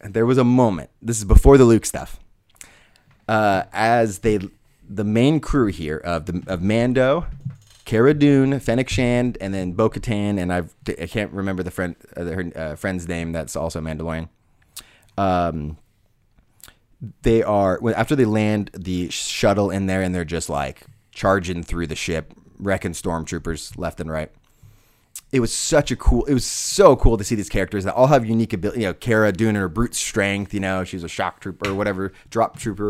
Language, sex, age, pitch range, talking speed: English, male, 30-49, 95-120 Hz, 190 wpm